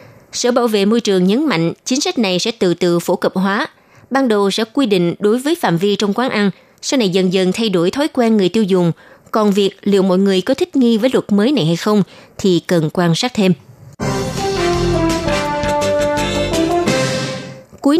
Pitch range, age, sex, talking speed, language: 180-240 Hz, 20-39, female, 195 wpm, Vietnamese